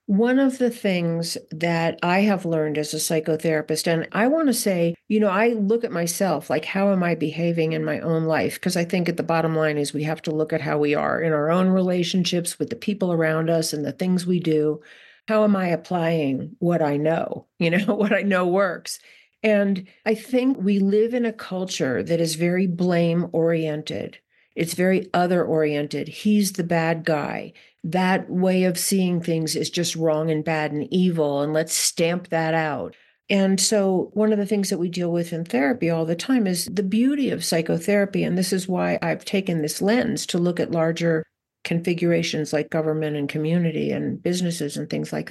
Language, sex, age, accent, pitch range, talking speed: English, female, 50-69, American, 160-200 Hz, 205 wpm